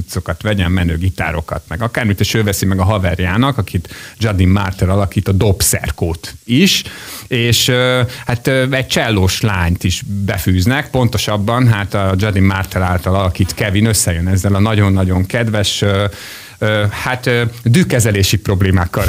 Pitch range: 95-115 Hz